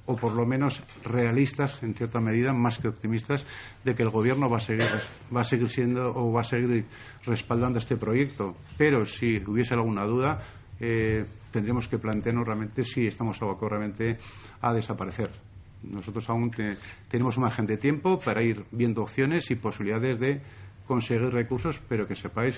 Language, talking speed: Spanish, 170 wpm